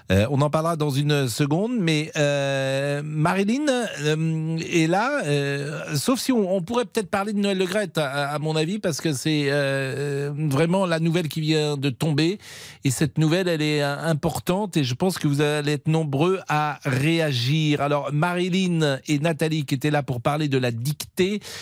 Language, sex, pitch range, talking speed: French, male, 125-165 Hz, 190 wpm